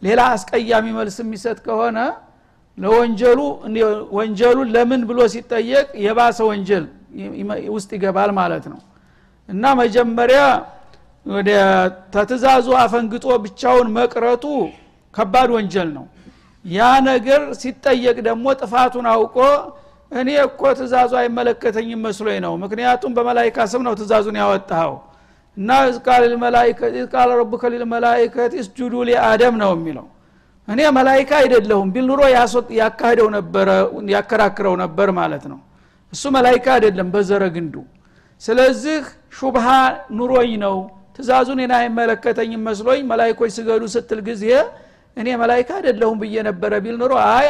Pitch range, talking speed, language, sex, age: 210-250 Hz, 100 wpm, Amharic, male, 60-79